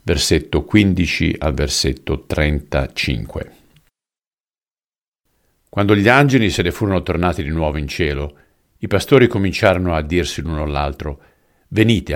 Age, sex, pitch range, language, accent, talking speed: 50-69, male, 75-95 Hz, Italian, native, 120 wpm